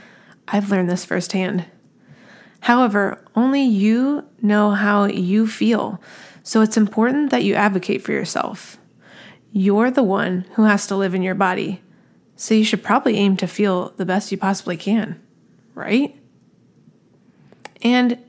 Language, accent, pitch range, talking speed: English, American, 190-230 Hz, 140 wpm